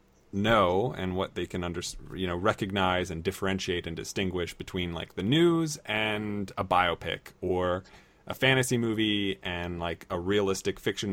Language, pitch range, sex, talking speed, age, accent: English, 90-110 Hz, male, 155 wpm, 30-49, American